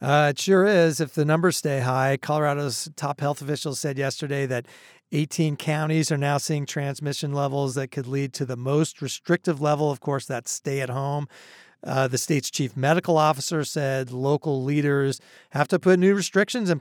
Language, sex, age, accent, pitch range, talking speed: English, male, 40-59, American, 135-160 Hz, 185 wpm